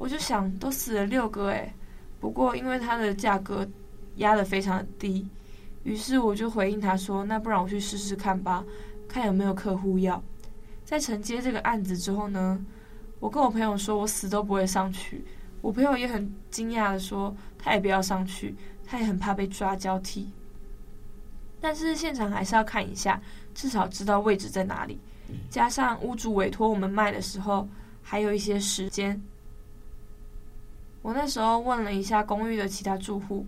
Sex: female